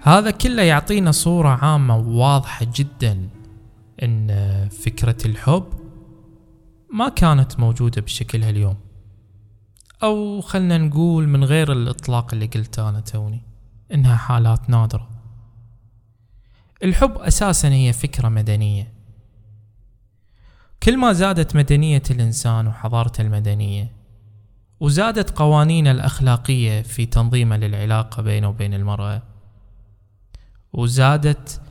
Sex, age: male, 20-39